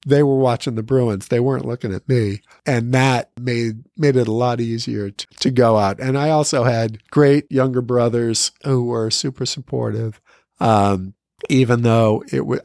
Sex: male